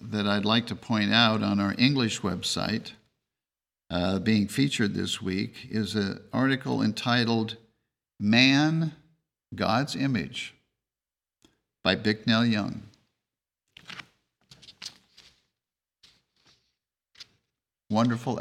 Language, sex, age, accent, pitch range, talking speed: English, male, 50-69, American, 100-125 Hz, 85 wpm